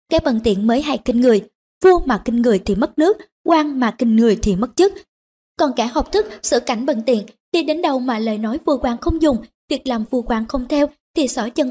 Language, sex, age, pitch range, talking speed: Vietnamese, male, 20-39, 225-300 Hz, 245 wpm